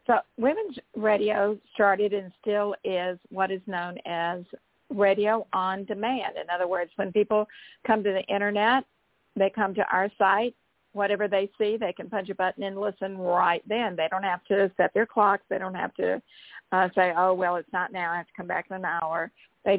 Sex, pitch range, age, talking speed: female, 175-205 Hz, 50-69, 205 wpm